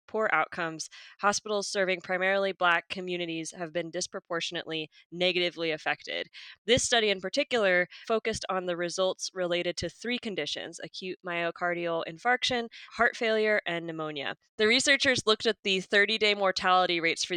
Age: 20-39